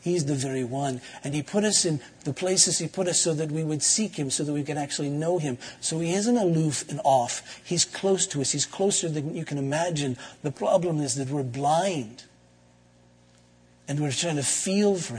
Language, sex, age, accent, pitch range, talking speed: English, male, 50-69, American, 130-180 Hz, 215 wpm